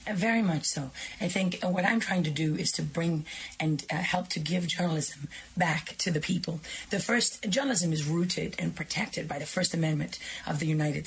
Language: English